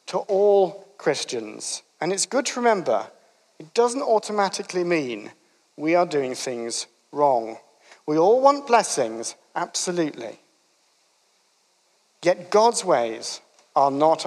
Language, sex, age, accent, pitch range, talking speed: English, male, 50-69, British, 150-215 Hz, 115 wpm